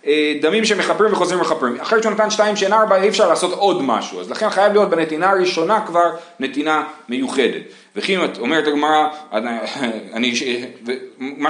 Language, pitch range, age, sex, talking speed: Hebrew, 160-230 Hz, 30-49, male, 145 wpm